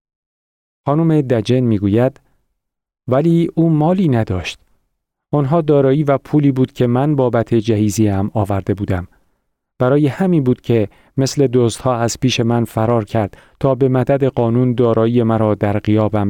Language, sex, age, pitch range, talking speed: Persian, male, 40-59, 110-140 Hz, 145 wpm